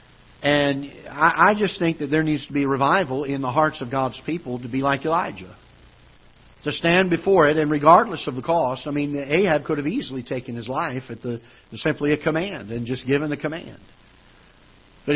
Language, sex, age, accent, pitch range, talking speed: English, male, 50-69, American, 125-160 Hz, 200 wpm